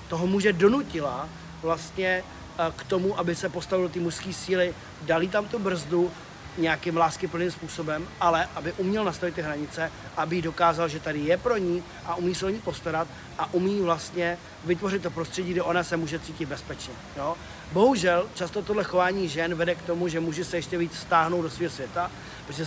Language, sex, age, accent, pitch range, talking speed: Czech, male, 30-49, native, 165-185 Hz, 185 wpm